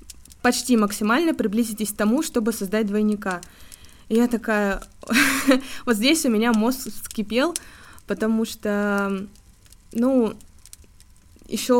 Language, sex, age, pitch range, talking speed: Russian, female, 20-39, 195-230 Hz, 105 wpm